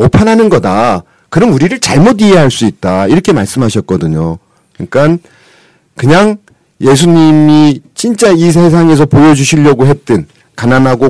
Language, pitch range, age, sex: Korean, 110-165 Hz, 40-59, male